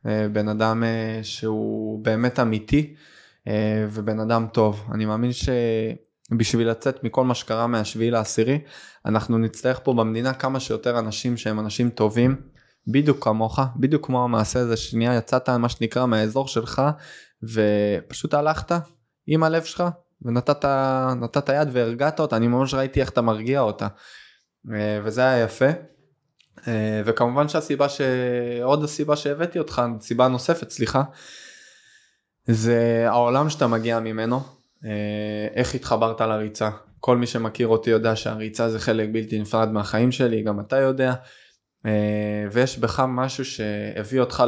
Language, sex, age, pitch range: Hebrew, male, 20-39, 110-130 Hz